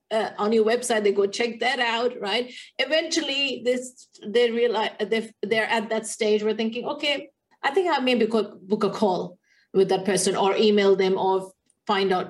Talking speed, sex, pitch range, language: 185 wpm, female, 195-250 Hz, English